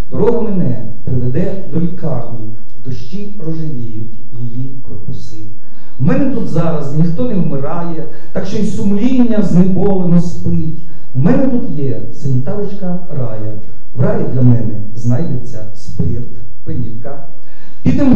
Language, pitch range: Ukrainian, 130-180 Hz